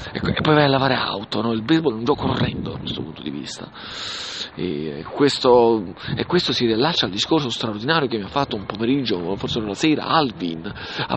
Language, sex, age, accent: English, male, 40-59, Italian